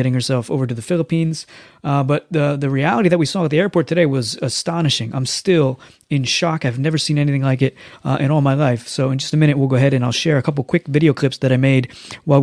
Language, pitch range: English, 130-160 Hz